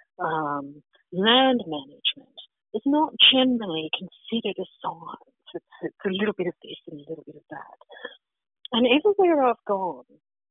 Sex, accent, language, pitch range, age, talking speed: female, American, English, 160-250 Hz, 50-69, 150 wpm